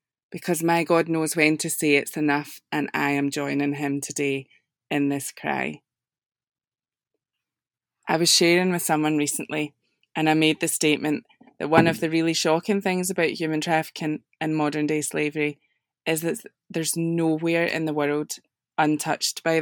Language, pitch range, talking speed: English, 150-170 Hz, 160 wpm